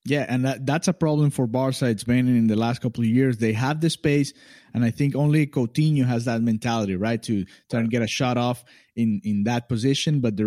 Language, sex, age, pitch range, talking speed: English, male, 20-39, 115-135 Hz, 245 wpm